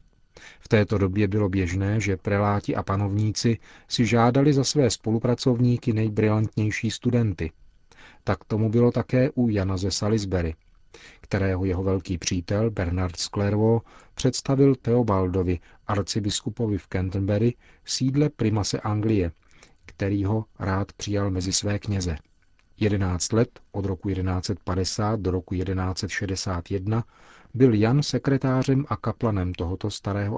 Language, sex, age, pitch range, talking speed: Czech, male, 40-59, 95-115 Hz, 120 wpm